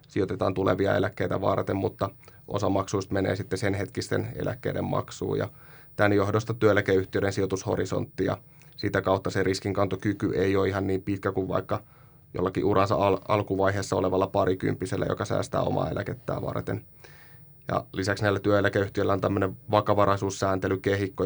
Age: 20-39